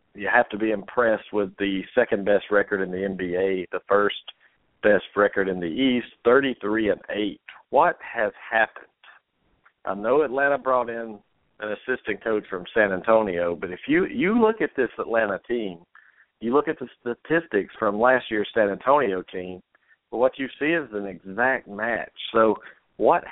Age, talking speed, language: 50-69, 160 wpm, English